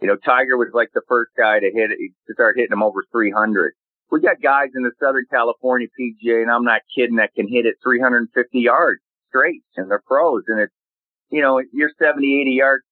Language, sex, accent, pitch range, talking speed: English, male, American, 110-150 Hz, 220 wpm